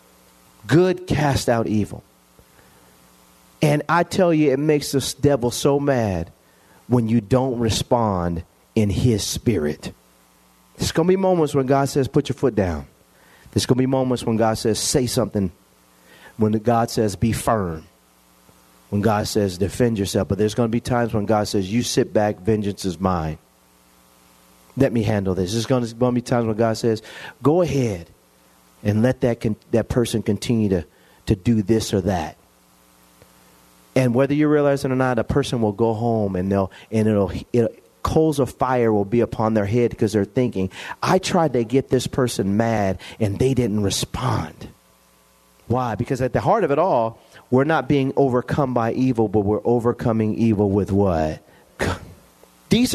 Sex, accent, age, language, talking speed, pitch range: male, American, 40-59, English, 175 wpm, 80-125 Hz